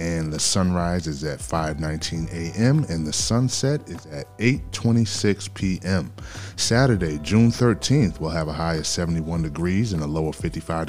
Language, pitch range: English, 80-100 Hz